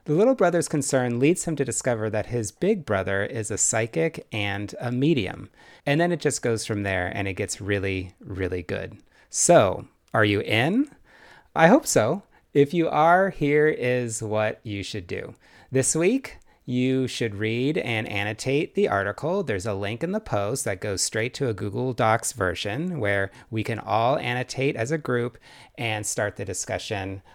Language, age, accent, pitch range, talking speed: English, 30-49, American, 100-135 Hz, 180 wpm